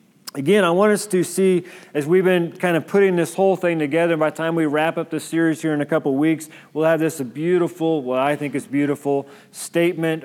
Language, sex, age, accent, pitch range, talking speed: English, male, 40-59, American, 145-180 Hz, 235 wpm